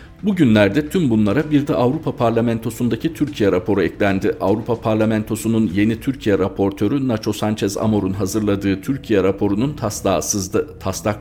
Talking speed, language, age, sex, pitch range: 130 wpm, Turkish, 50-69, male, 100-120 Hz